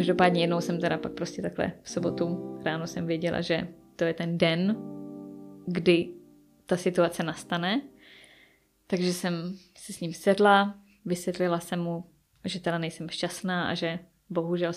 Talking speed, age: 150 wpm, 20-39